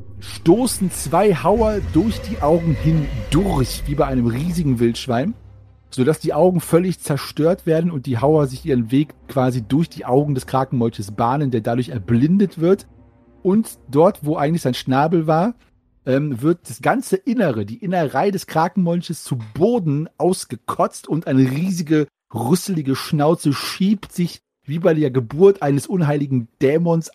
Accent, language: German, German